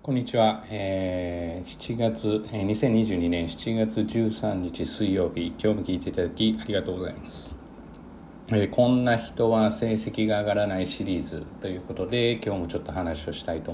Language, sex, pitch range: Japanese, male, 90-125 Hz